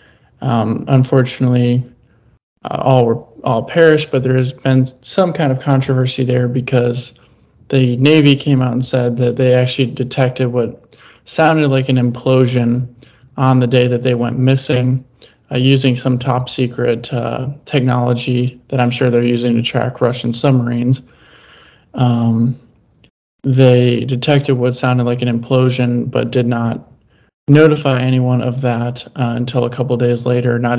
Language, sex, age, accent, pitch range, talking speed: English, male, 20-39, American, 120-130 Hz, 150 wpm